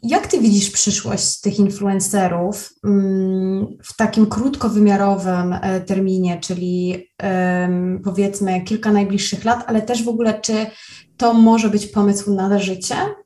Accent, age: native, 20-39